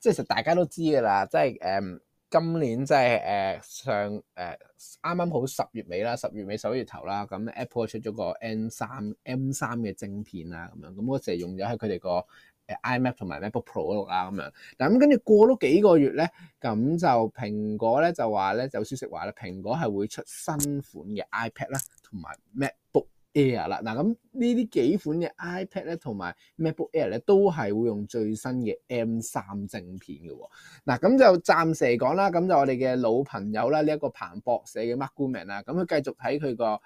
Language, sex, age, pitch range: Chinese, male, 20-39, 110-165 Hz